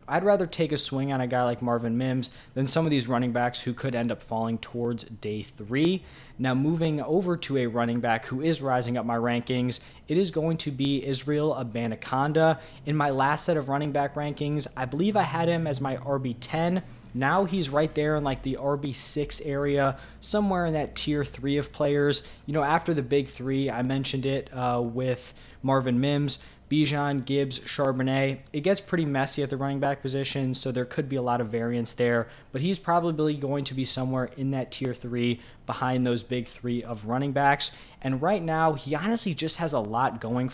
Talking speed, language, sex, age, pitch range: 205 wpm, English, male, 20-39, 125-150 Hz